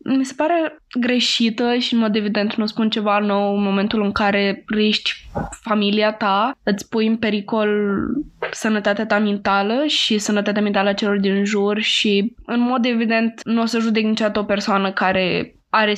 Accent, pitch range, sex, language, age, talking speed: native, 205-230 Hz, female, Romanian, 10-29, 175 wpm